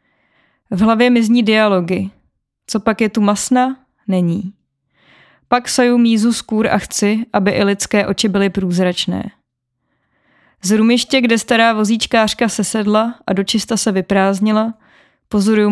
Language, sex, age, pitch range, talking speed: Czech, female, 20-39, 195-230 Hz, 130 wpm